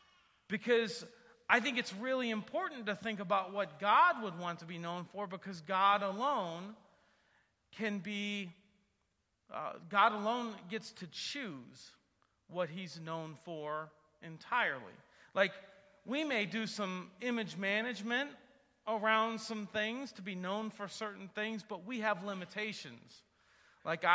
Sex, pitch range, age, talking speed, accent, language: male, 175-230 Hz, 40-59, 135 wpm, American, English